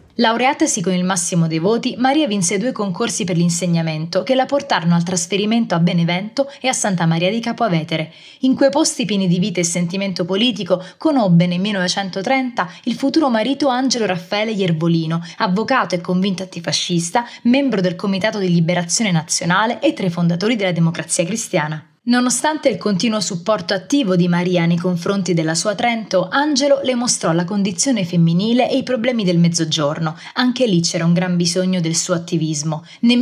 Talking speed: 170 wpm